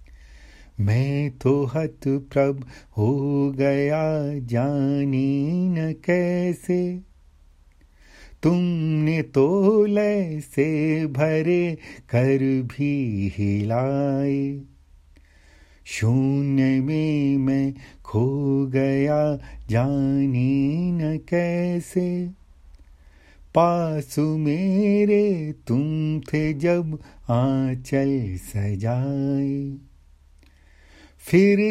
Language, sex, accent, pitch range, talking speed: Hindi, male, native, 135-205 Hz, 60 wpm